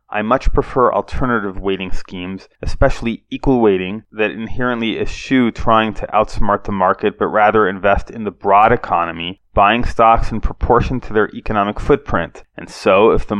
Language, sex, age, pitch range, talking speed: English, male, 20-39, 95-115 Hz, 160 wpm